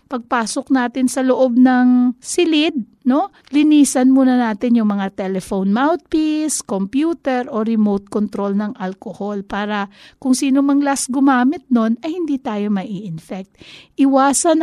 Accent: native